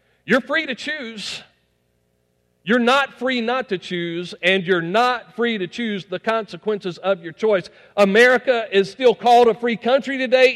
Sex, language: male, English